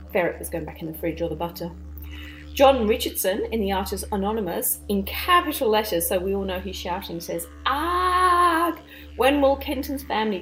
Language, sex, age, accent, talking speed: English, female, 40-59, British, 180 wpm